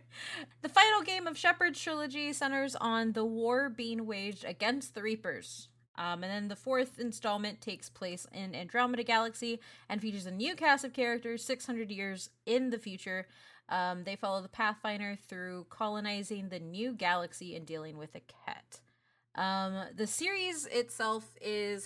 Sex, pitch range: female, 185-245 Hz